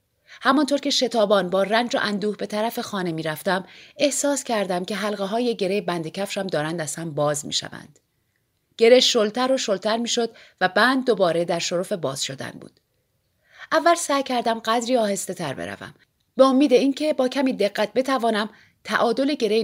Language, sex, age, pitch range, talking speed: Persian, female, 30-49, 185-250 Hz, 170 wpm